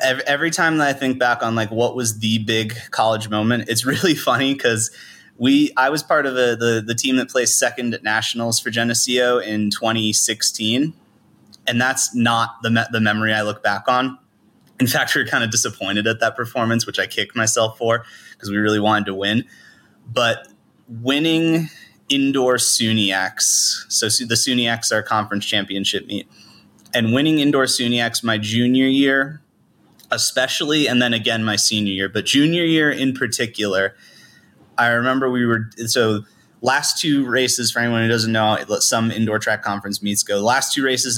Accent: American